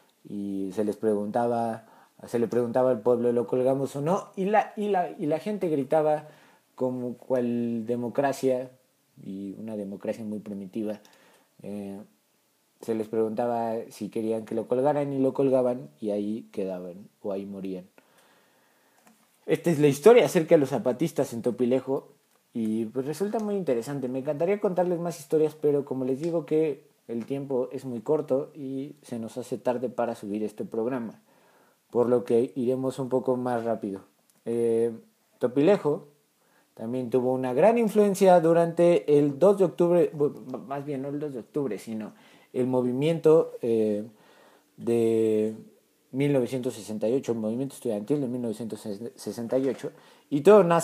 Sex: male